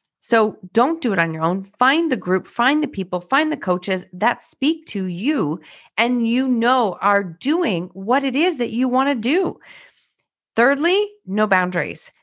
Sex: female